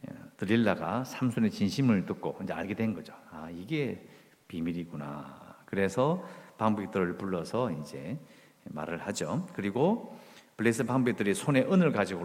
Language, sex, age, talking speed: English, male, 50-69, 115 wpm